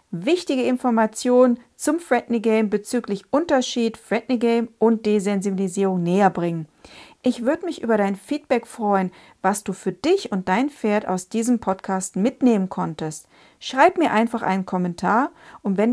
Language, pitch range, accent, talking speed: German, 190-245 Hz, German, 145 wpm